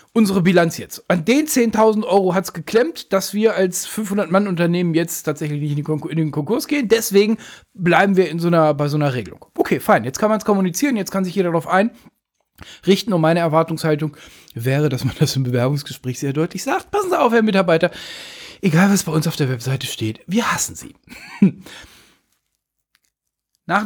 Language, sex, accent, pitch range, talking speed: German, male, German, 150-215 Hz, 180 wpm